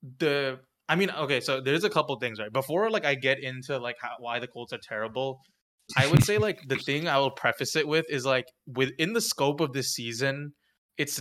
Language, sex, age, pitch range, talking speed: English, male, 20-39, 120-140 Hz, 225 wpm